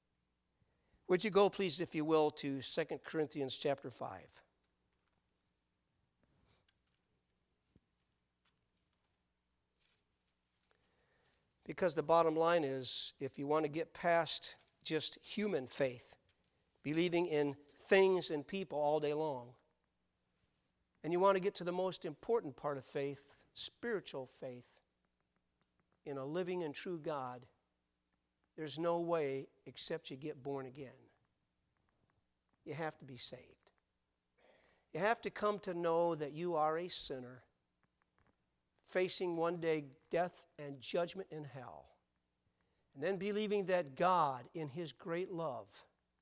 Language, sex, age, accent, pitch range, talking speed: English, male, 50-69, American, 125-170 Hz, 125 wpm